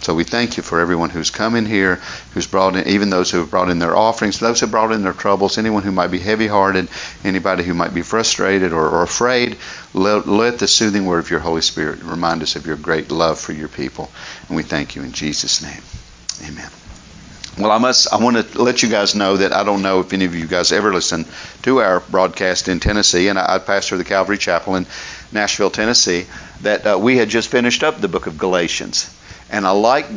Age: 50-69